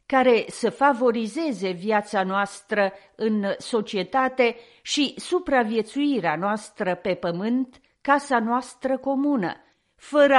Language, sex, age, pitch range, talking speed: Romanian, female, 40-59, 215-280 Hz, 90 wpm